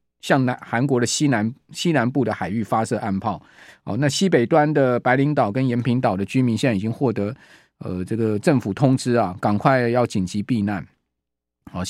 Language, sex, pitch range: Chinese, male, 110-145 Hz